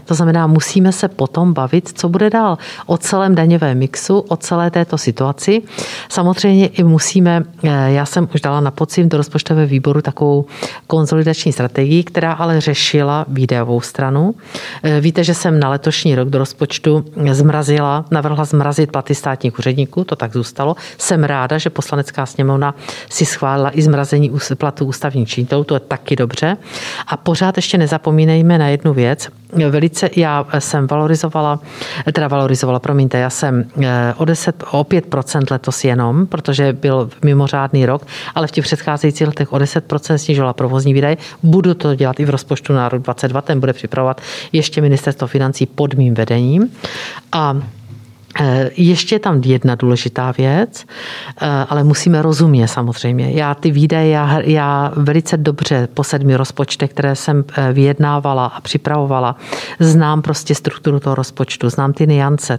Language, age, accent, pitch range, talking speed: Czech, 50-69, native, 135-160 Hz, 150 wpm